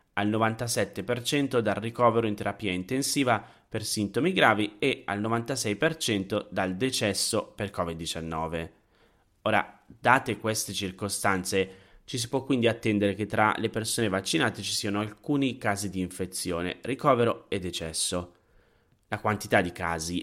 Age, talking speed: 30-49, 130 wpm